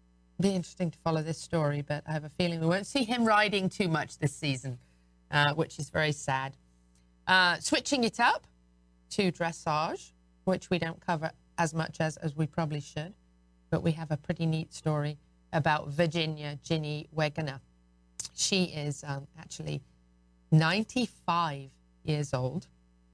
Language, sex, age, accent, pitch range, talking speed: English, female, 40-59, British, 140-170 Hz, 155 wpm